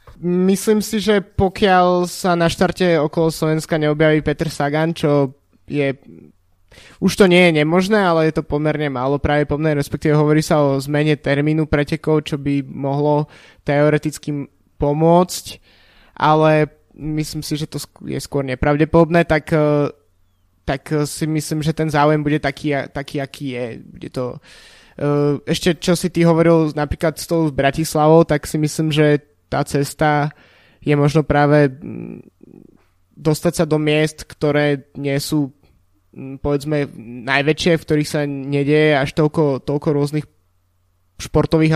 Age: 20-39